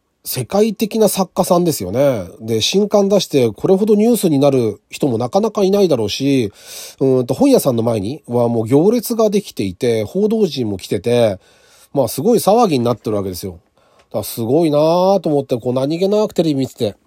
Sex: male